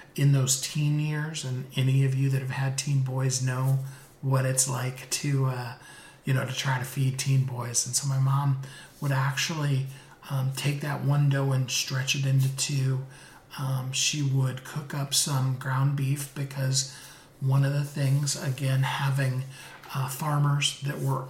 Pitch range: 130-140 Hz